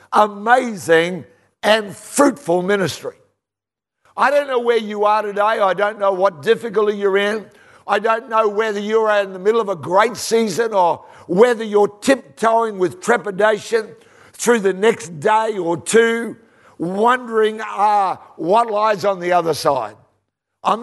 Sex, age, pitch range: male, 60-79, 170-225 Hz